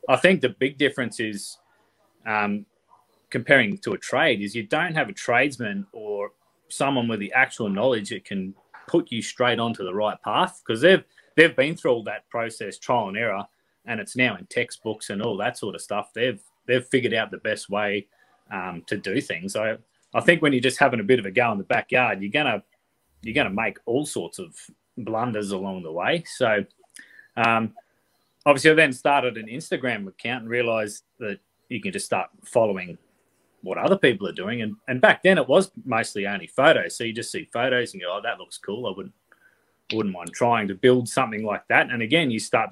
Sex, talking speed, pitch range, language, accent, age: male, 210 wpm, 105-135 Hz, English, Australian, 30-49